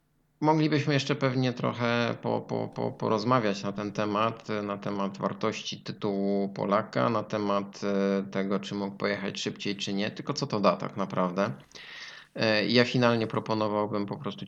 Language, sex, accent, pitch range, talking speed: Polish, male, native, 95-110 Hz, 135 wpm